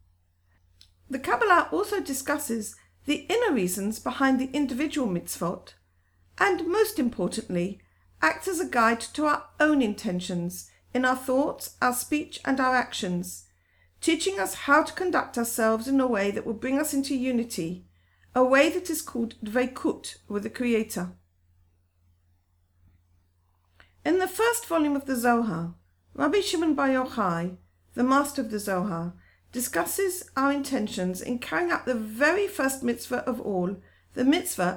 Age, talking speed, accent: 50-69, 145 wpm, British